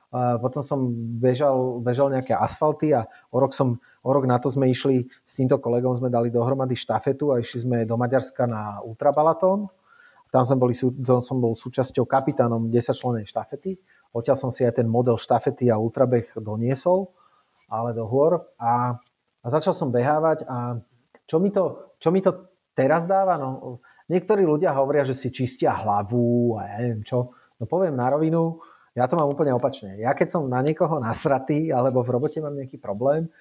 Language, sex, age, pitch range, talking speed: Slovak, male, 30-49, 120-145 Hz, 180 wpm